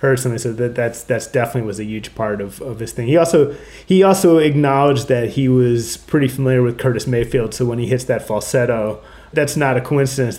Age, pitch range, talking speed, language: 30-49, 130-170 Hz, 215 wpm, English